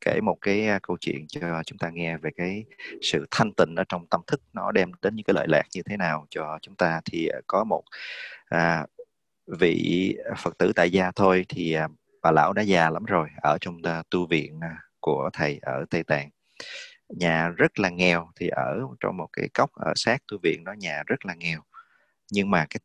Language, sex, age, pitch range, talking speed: English, male, 30-49, 80-95 Hz, 210 wpm